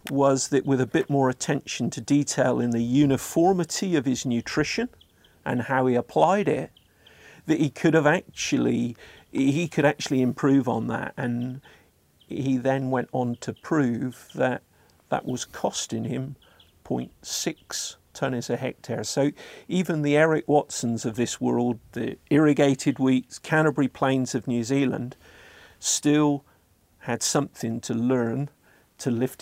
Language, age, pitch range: English, 50-69, 115-145 Hz